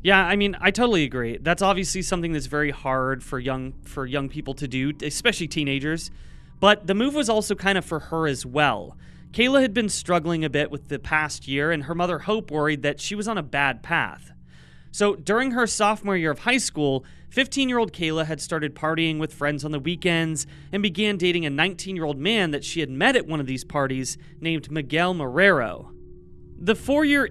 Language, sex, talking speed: English, male, 205 wpm